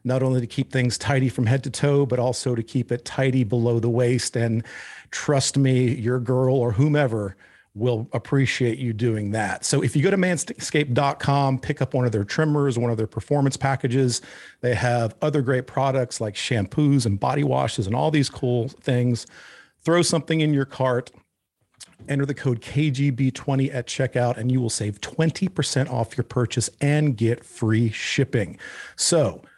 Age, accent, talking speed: 40-59, American, 175 wpm